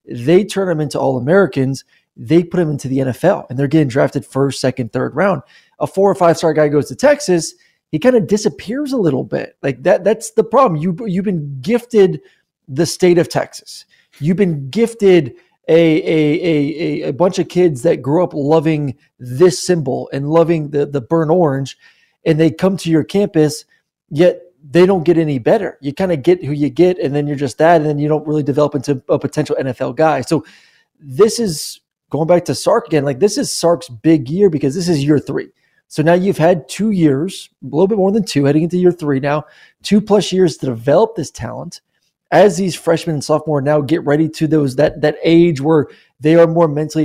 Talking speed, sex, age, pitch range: 215 wpm, male, 20-39, 145-180 Hz